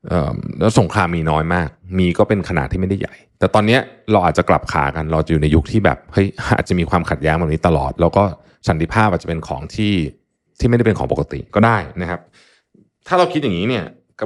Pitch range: 85-115 Hz